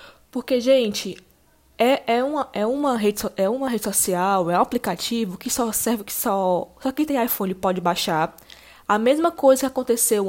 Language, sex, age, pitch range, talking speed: Portuguese, female, 10-29, 190-255 Hz, 180 wpm